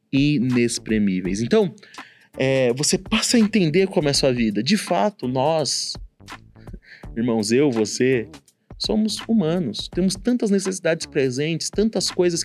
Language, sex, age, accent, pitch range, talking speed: Portuguese, male, 30-49, Brazilian, 125-190 Hz, 120 wpm